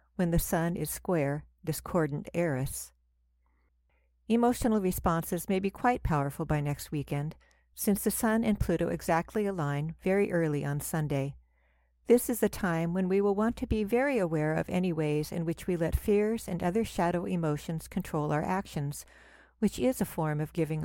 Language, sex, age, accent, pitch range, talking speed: English, female, 60-79, American, 145-195 Hz, 175 wpm